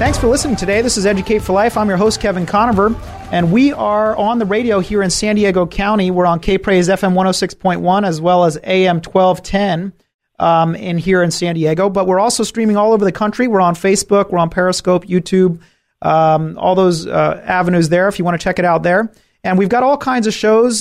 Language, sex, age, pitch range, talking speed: English, male, 30-49, 170-195 Hz, 220 wpm